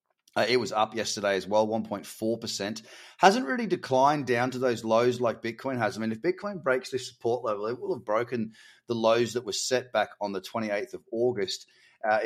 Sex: male